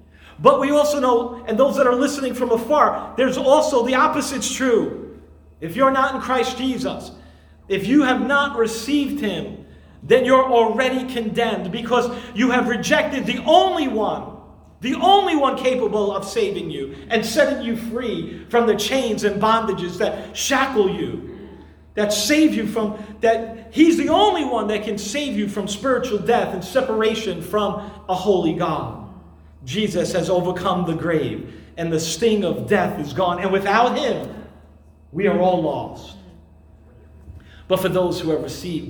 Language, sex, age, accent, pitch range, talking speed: English, male, 40-59, American, 155-245 Hz, 160 wpm